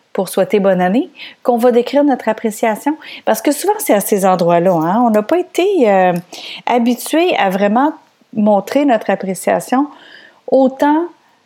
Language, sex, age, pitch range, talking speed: French, female, 40-59, 190-260 Hz, 150 wpm